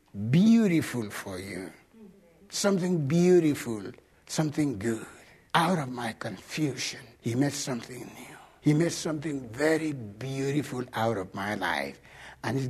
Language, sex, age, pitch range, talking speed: English, male, 60-79, 135-200 Hz, 125 wpm